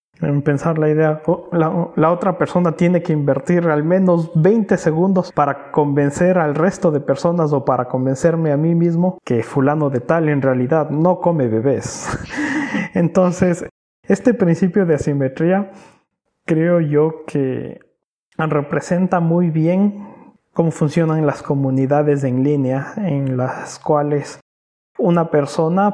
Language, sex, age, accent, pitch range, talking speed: Spanish, male, 30-49, Mexican, 140-175 Hz, 135 wpm